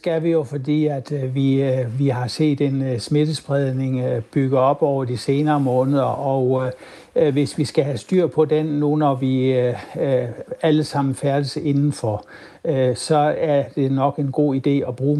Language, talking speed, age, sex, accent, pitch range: Danish, 160 wpm, 60-79, male, native, 130-155 Hz